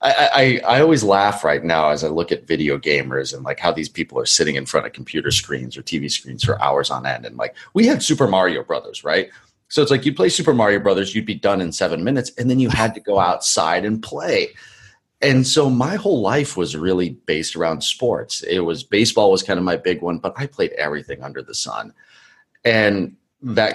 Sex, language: male, English